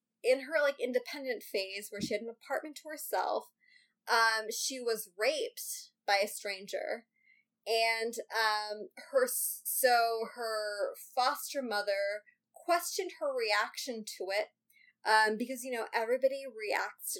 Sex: female